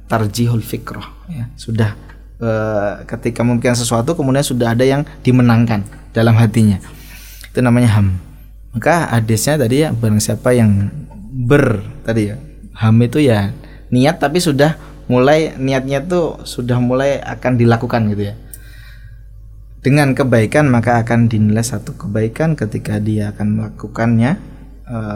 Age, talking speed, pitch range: 20-39, 130 wpm, 110-135 Hz